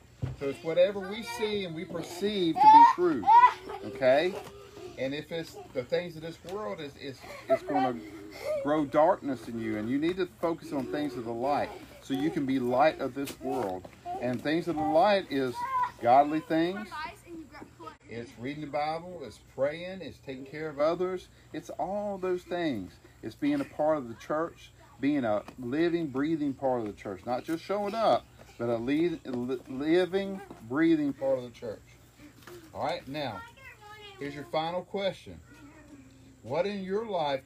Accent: American